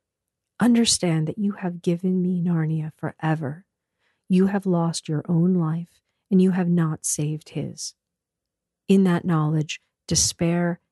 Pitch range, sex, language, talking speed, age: 165-185 Hz, female, English, 130 wpm, 40-59